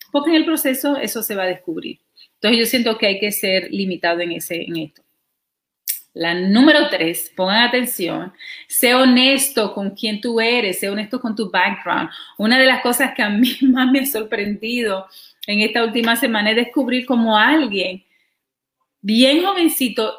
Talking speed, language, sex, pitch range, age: 170 wpm, Spanish, female, 205-265 Hz, 40-59